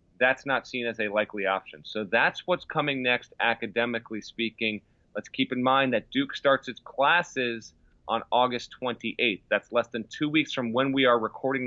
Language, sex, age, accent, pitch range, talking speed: English, male, 30-49, American, 105-125 Hz, 185 wpm